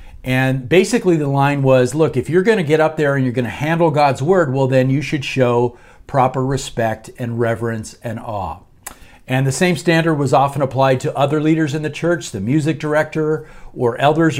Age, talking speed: 50-69, 205 wpm